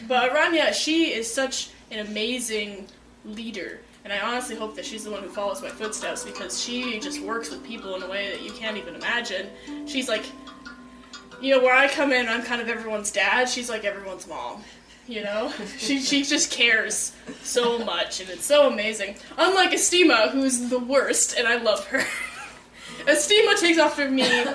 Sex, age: female, 10-29